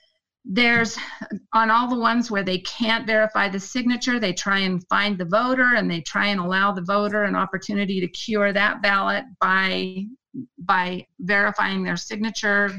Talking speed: 165 wpm